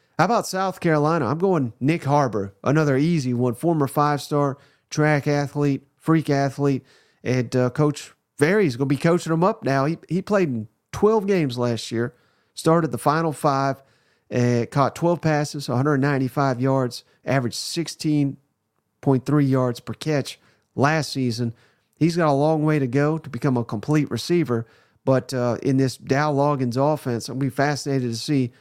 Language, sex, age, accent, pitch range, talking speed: English, male, 40-59, American, 125-155 Hz, 170 wpm